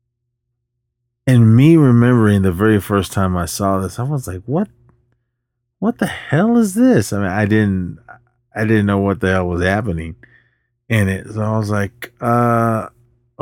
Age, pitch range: 30-49, 100-120 Hz